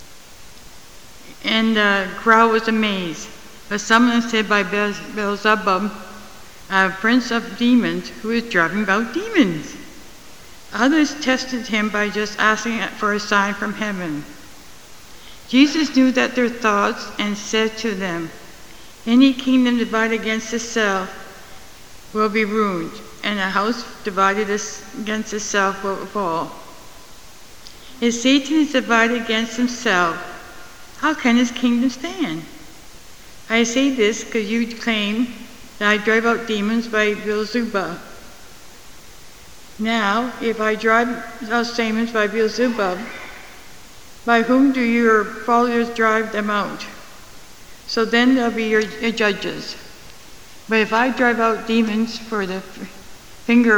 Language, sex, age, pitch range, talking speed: English, female, 60-79, 205-235 Hz, 125 wpm